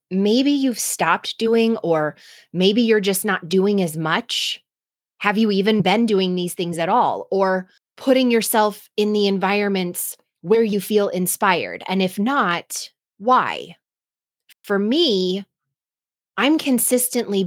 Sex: female